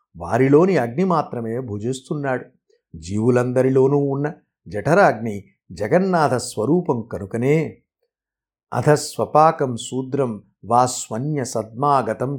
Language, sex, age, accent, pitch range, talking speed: Telugu, male, 50-69, native, 115-150 Hz, 65 wpm